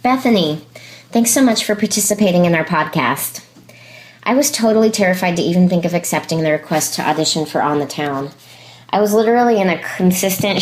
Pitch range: 145-185 Hz